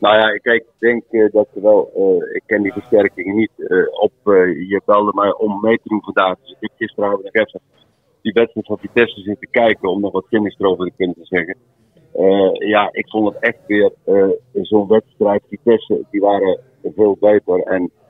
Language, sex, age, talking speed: Dutch, male, 50-69, 215 wpm